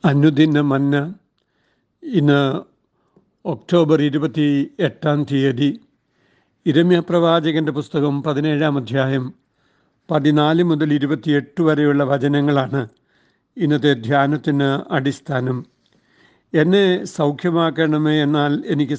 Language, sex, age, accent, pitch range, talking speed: Malayalam, male, 60-79, native, 145-165 Hz, 75 wpm